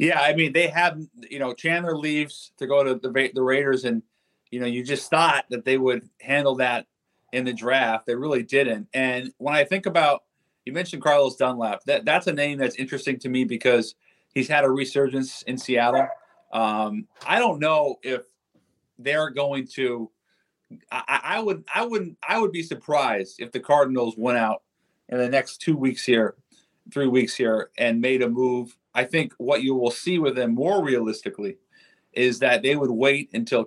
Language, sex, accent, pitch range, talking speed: English, male, American, 120-145 Hz, 190 wpm